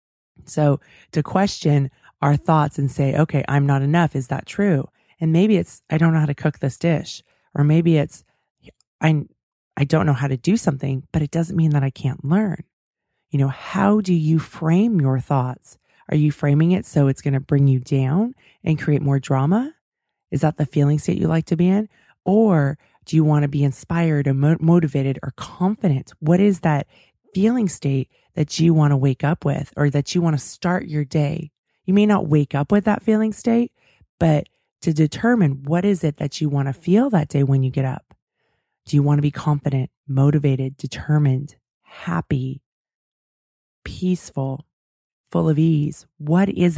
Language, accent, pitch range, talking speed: English, American, 140-170 Hz, 190 wpm